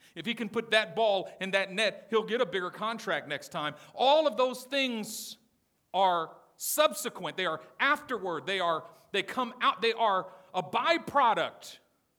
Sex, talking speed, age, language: male, 165 wpm, 50-69, English